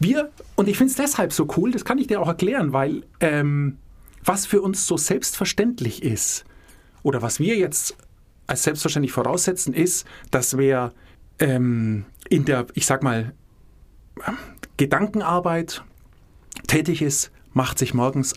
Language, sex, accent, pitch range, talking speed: German, male, German, 130-185 Hz, 145 wpm